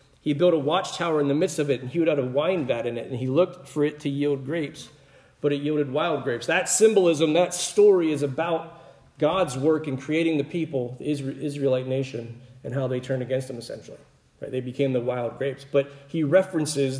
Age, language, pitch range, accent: 40-59, English, 135-160 Hz, American